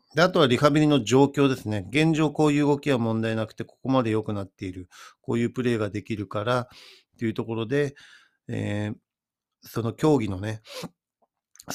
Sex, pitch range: male, 105-130 Hz